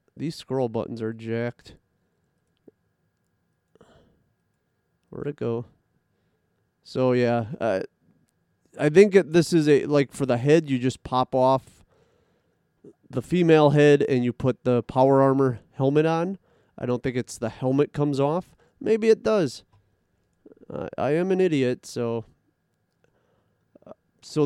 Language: English